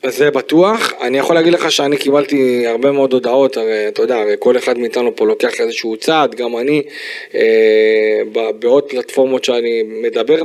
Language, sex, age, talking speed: Hebrew, male, 20-39, 165 wpm